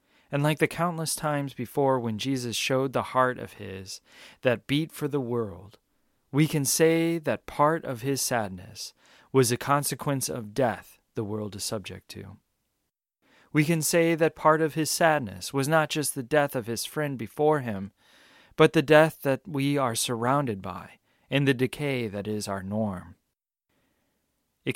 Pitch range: 105-140 Hz